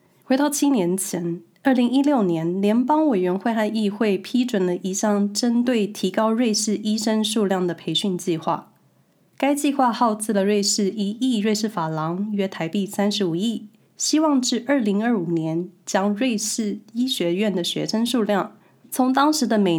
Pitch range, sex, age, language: 185-240 Hz, female, 20-39, Chinese